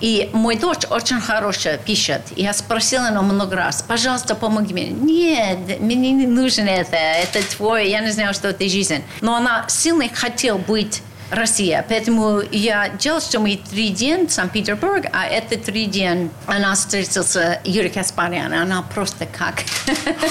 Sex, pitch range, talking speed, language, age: female, 205-255 Hz, 165 wpm, Russian, 40-59